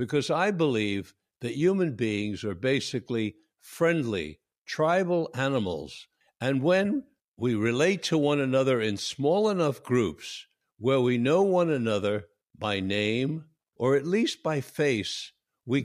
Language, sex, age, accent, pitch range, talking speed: English, male, 60-79, American, 115-175 Hz, 135 wpm